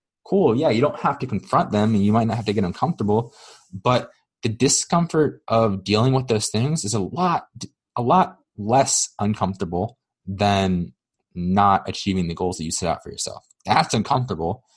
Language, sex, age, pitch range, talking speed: English, male, 20-39, 95-125 Hz, 180 wpm